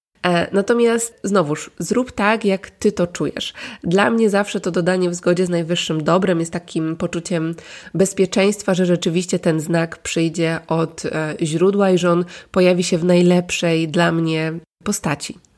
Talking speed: 150 wpm